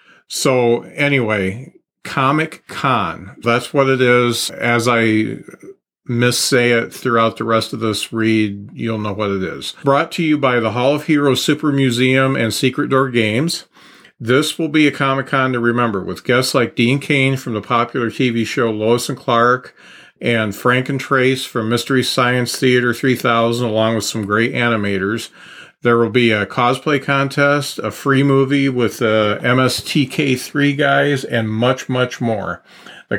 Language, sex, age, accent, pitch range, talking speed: English, male, 40-59, American, 115-135 Hz, 160 wpm